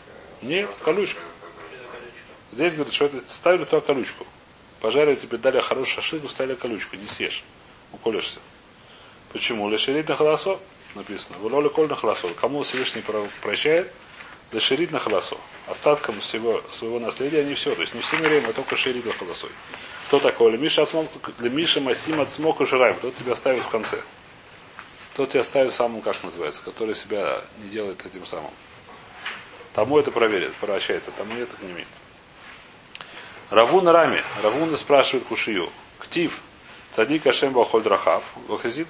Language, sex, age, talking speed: Russian, male, 30-49, 155 wpm